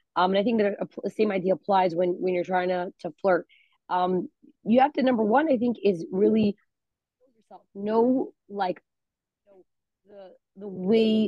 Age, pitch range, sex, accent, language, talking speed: 20-39, 185-215 Hz, female, American, English, 180 wpm